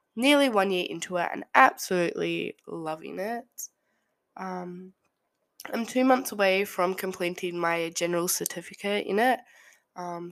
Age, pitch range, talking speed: 10-29, 175-220 Hz, 130 wpm